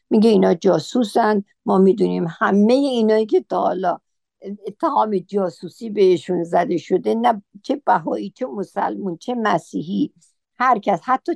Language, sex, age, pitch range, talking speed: Persian, female, 60-79, 180-225 Hz, 120 wpm